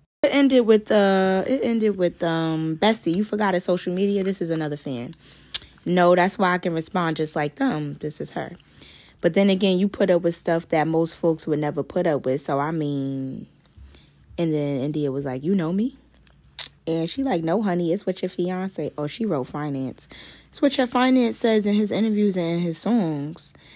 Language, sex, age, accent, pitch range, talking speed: English, female, 20-39, American, 150-205 Hz, 205 wpm